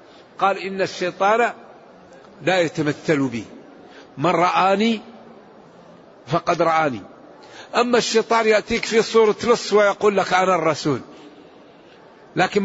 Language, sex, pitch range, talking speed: Arabic, male, 175-215 Hz, 100 wpm